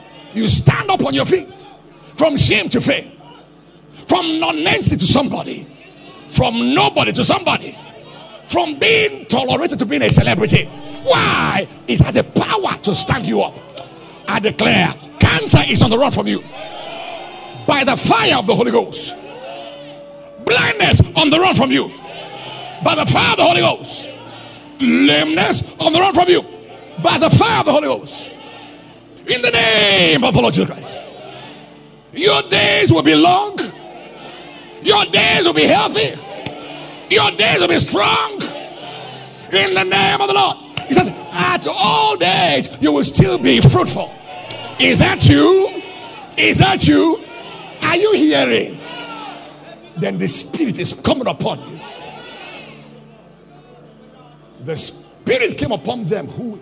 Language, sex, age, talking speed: English, male, 50-69, 145 wpm